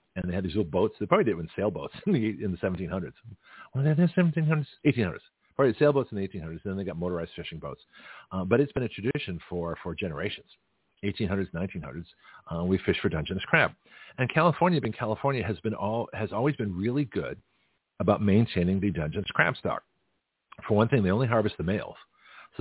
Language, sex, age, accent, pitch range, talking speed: English, male, 50-69, American, 95-125 Hz, 205 wpm